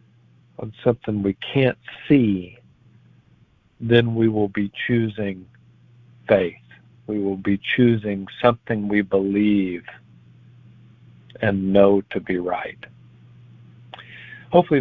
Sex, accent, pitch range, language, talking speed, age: male, American, 95-115 Hz, English, 95 wpm, 50-69